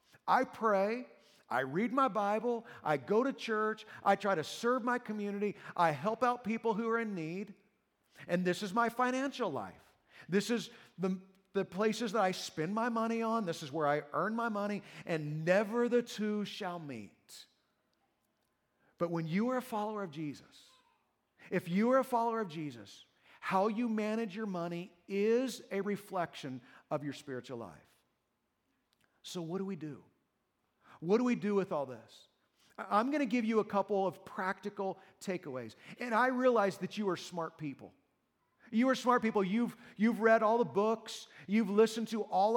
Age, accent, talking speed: 50-69, American, 175 wpm